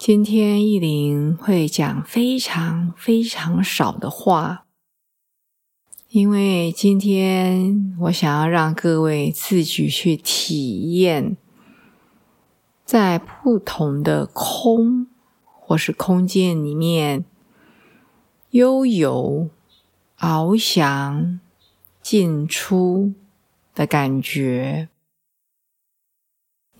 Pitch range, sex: 150-205 Hz, female